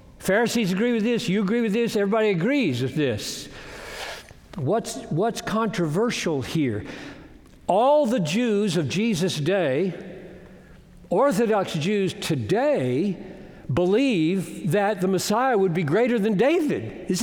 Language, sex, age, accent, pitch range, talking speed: English, male, 60-79, American, 155-240 Hz, 120 wpm